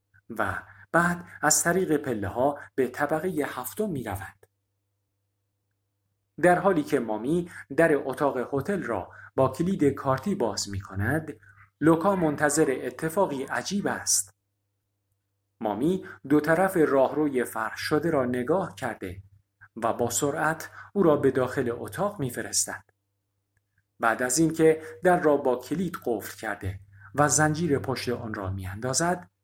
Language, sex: Persian, male